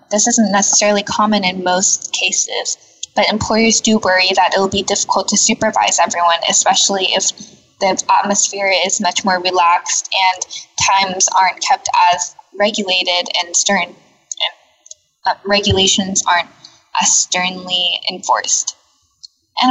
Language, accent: English, American